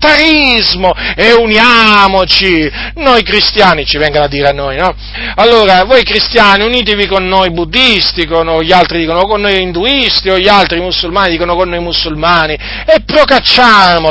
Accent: native